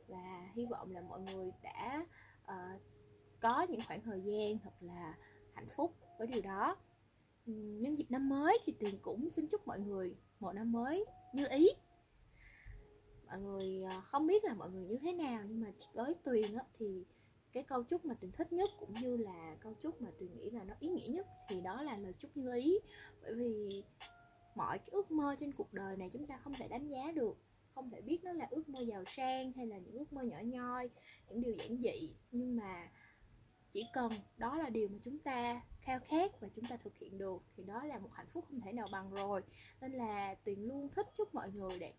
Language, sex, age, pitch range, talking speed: Vietnamese, female, 10-29, 200-290 Hz, 220 wpm